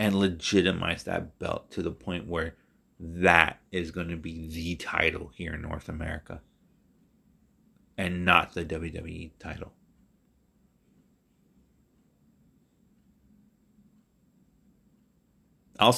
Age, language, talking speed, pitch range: 30-49, English, 90 wpm, 80-115 Hz